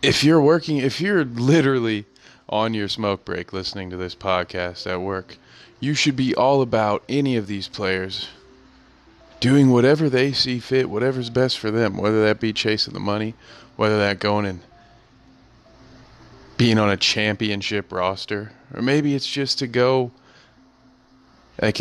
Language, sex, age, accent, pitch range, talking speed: English, male, 30-49, American, 100-125 Hz, 155 wpm